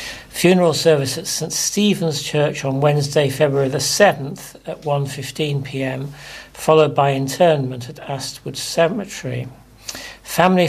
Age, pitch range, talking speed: 60-79, 135-155 Hz, 125 wpm